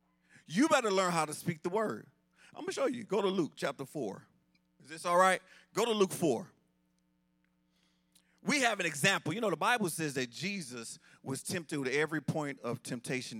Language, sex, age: English, male, 40-59